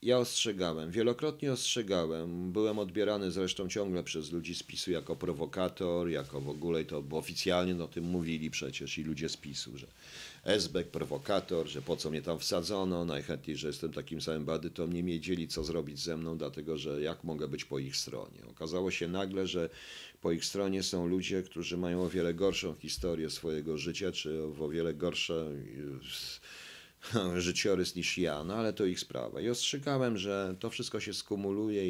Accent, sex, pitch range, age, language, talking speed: native, male, 80-100 Hz, 40-59, Polish, 180 wpm